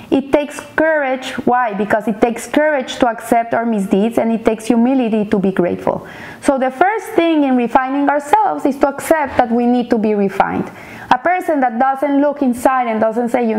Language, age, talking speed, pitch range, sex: English, 30-49, 200 wpm, 220-280 Hz, female